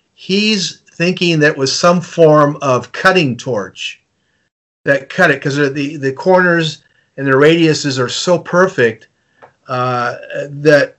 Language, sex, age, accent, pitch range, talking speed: English, male, 40-59, American, 130-165 Hz, 130 wpm